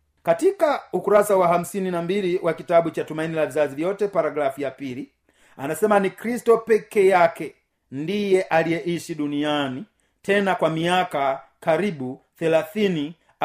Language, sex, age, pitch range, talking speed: Swahili, male, 40-59, 145-210 Hz, 130 wpm